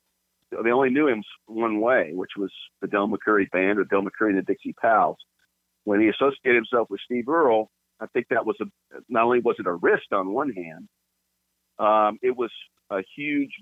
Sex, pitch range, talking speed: male, 90-120 Hz, 195 wpm